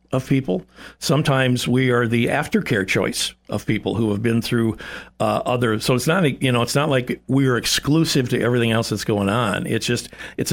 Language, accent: English, American